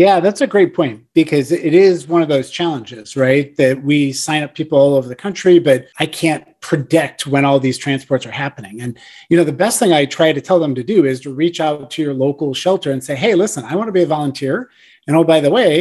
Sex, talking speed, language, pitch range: male, 260 wpm, English, 145-195 Hz